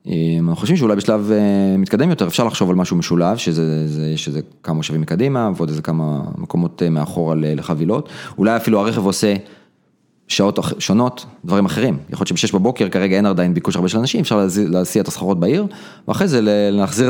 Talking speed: 180 wpm